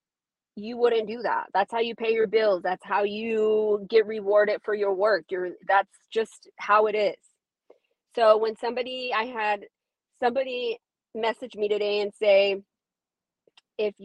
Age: 30-49